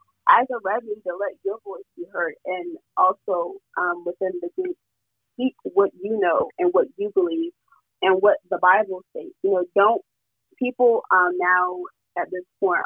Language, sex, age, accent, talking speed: English, female, 20-39, American, 175 wpm